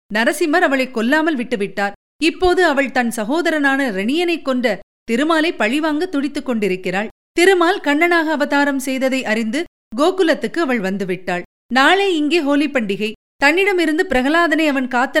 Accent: native